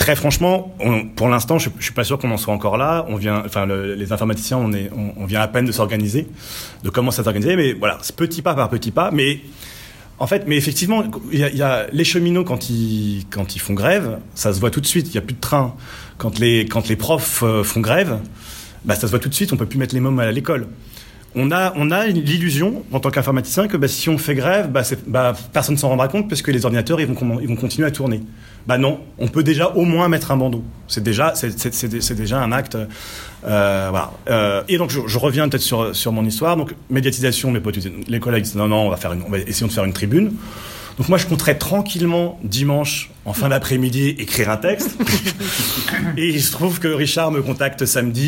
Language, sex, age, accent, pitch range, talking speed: French, male, 30-49, French, 110-150 Hz, 245 wpm